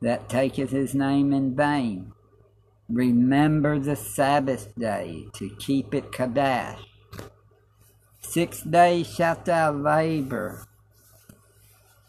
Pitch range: 105-140 Hz